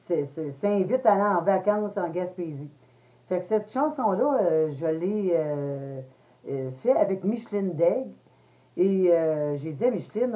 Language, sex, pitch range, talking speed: French, female, 165-210 Hz, 160 wpm